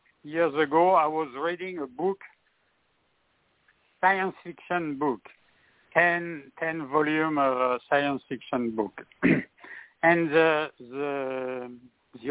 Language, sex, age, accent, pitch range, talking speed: English, male, 60-79, French, 130-165 Hz, 100 wpm